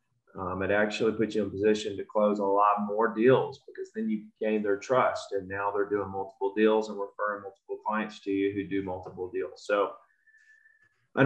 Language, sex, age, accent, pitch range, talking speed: English, male, 30-49, American, 100-135 Hz, 205 wpm